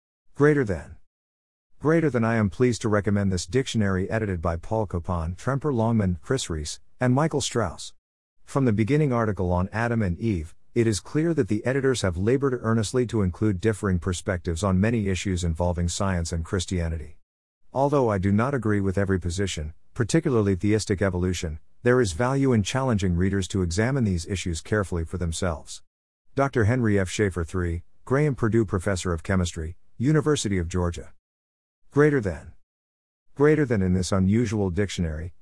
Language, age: English, 50-69